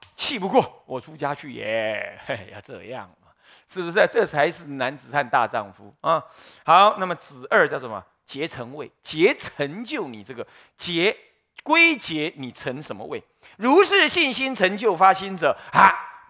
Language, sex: Chinese, male